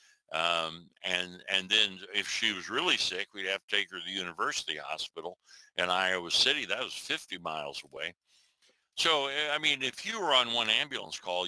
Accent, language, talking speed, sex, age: American, English, 190 wpm, male, 60-79